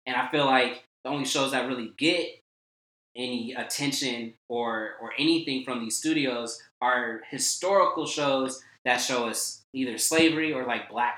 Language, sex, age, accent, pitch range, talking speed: English, male, 20-39, American, 115-165 Hz, 155 wpm